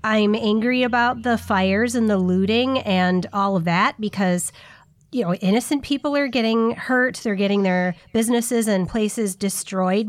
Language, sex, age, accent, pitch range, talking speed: English, female, 30-49, American, 185-245 Hz, 160 wpm